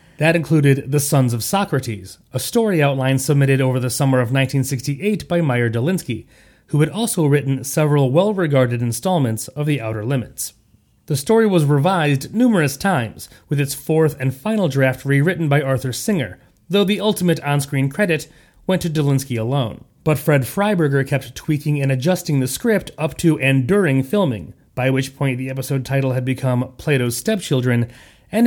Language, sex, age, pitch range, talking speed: English, male, 30-49, 130-170 Hz, 165 wpm